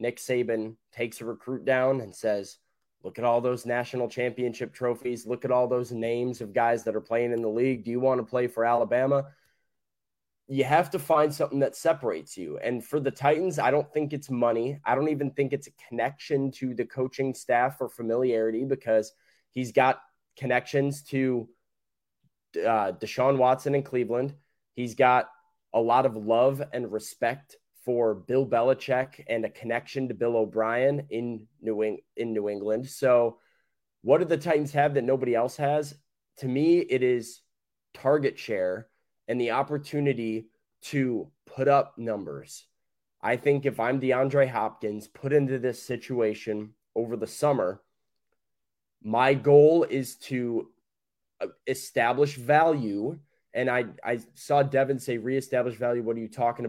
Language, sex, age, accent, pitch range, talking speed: English, male, 20-39, American, 115-140 Hz, 160 wpm